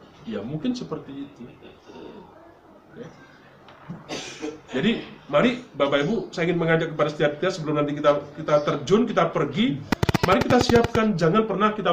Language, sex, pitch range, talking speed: Indonesian, male, 130-180 Hz, 140 wpm